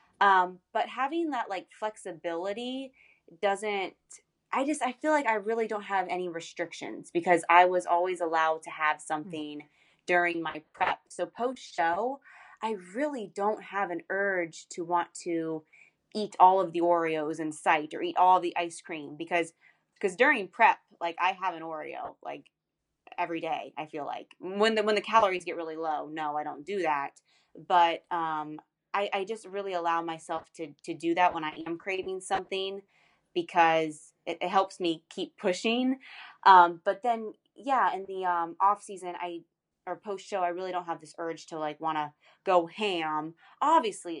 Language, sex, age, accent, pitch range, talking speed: English, female, 20-39, American, 165-205 Hz, 180 wpm